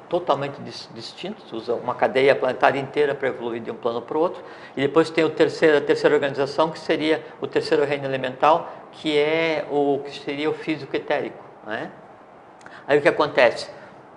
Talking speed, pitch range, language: 180 wpm, 140-160 Hz, Portuguese